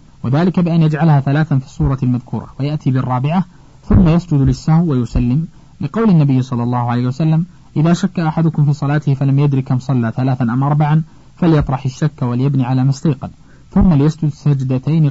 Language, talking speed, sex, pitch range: Arabic, 155 wpm, male, 130-160 Hz